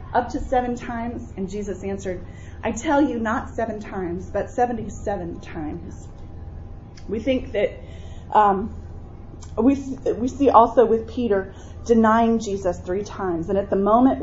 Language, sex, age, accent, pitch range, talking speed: English, female, 30-49, American, 180-240 Hz, 150 wpm